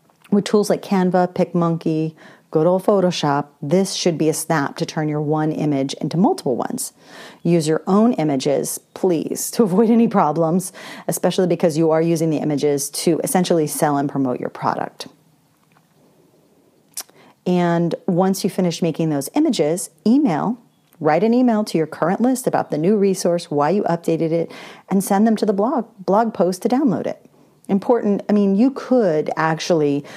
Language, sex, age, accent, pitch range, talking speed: English, female, 40-59, American, 160-205 Hz, 165 wpm